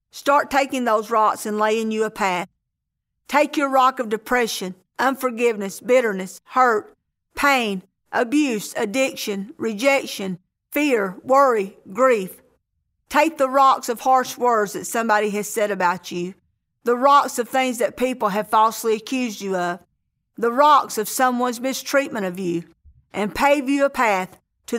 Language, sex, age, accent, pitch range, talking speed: English, female, 50-69, American, 210-265 Hz, 145 wpm